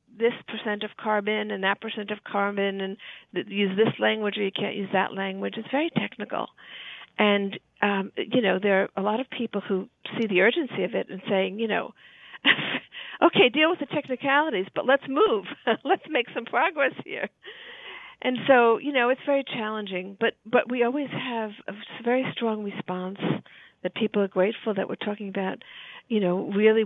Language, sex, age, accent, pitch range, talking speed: English, female, 50-69, American, 200-250 Hz, 185 wpm